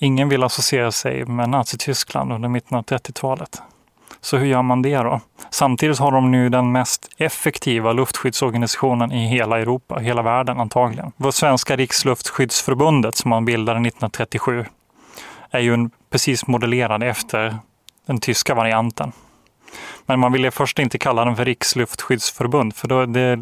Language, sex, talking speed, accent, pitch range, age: Swedish, male, 145 wpm, native, 120-135 Hz, 20-39